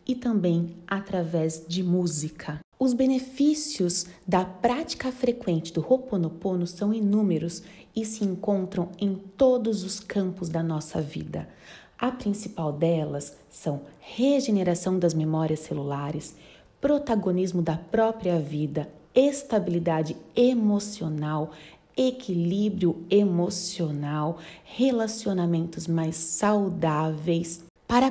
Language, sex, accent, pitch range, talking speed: Portuguese, female, Brazilian, 160-205 Hz, 95 wpm